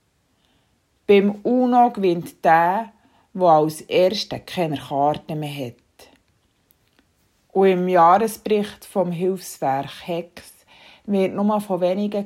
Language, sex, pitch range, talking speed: German, female, 160-210 Hz, 105 wpm